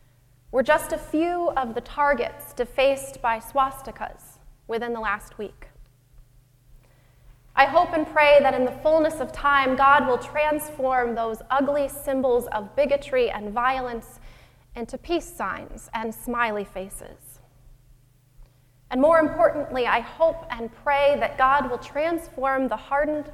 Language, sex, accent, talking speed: English, female, American, 135 wpm